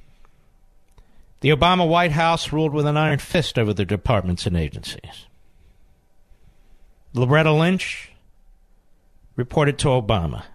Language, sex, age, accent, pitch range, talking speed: English, male, 50-69, American, 135-225 Hz, 110 wpm